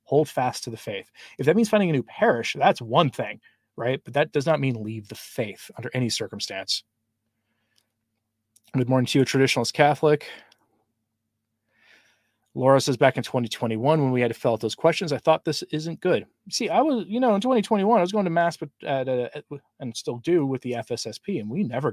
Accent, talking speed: American, 205 wpm